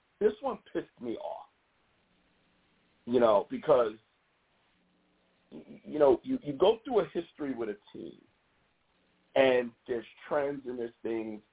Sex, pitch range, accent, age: male, 120-185 Hz, American, 50-69